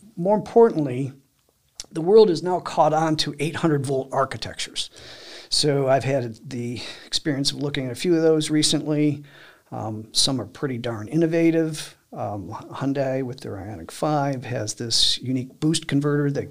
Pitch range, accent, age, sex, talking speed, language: 115-150 Hz, American, 50-69, male, 155 wpm, English